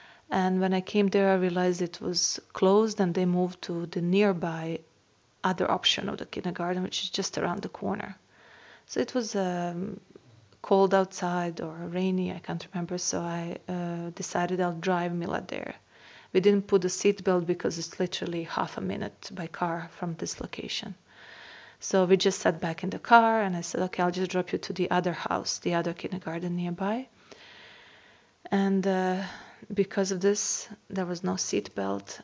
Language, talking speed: English, 175 wpm